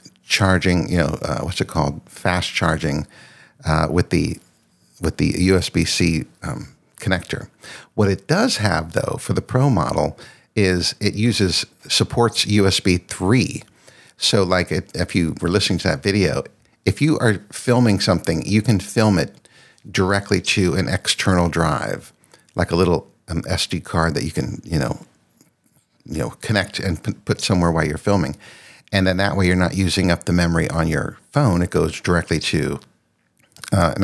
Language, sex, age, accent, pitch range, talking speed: English, male, 60-79, American, 85-105 Hz, 165 wpm